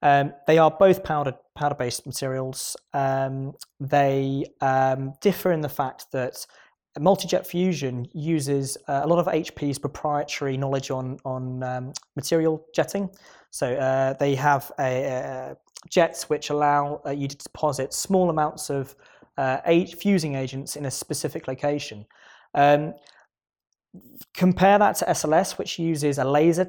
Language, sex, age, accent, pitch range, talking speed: English, male, 20-39, British, 135-165 Hz, 145 wpm